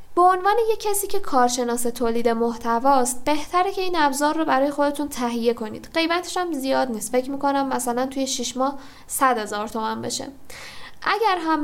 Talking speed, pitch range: 175 wpm, 245-320 Hz